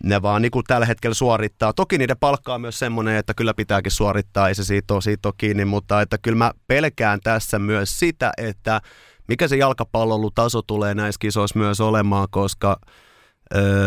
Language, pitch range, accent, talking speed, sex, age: Finnish, 100-115 Hz, native, 175 wpm, male, 30-49